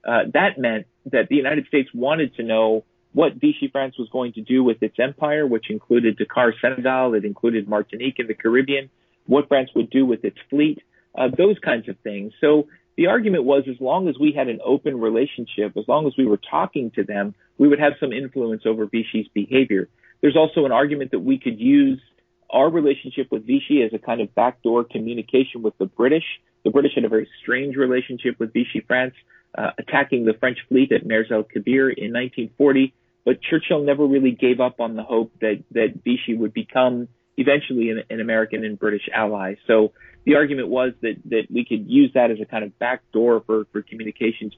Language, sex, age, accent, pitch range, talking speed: English, male, 40-59, American, 110-140 Hz, 200 wpm